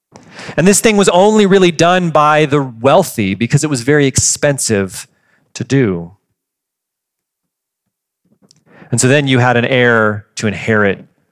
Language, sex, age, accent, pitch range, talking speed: English, male, 40-59, American, 140-185 Hz, 140 wpm